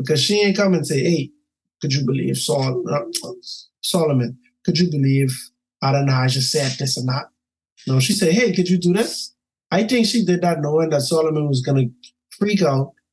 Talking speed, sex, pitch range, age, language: 185 wpm, male, 130-175 Hz, 20-39, English